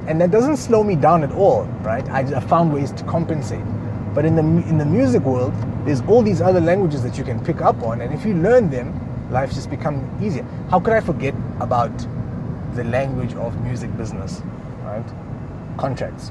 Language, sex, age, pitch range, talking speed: English, male, 30-49, 110-140 Hz, 195 wpm